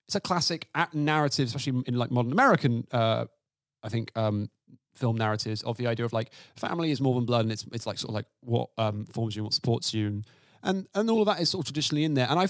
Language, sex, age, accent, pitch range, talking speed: English, male, 30-49, British, 115-150 Hz, 260 wpm